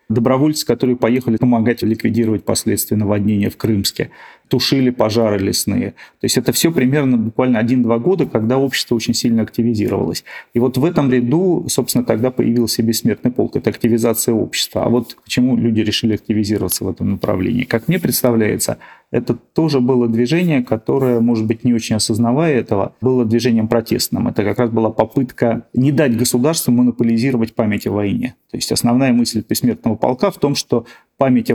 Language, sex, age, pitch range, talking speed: Russian, male, 40-59, 110-125 Hz, 165 wpm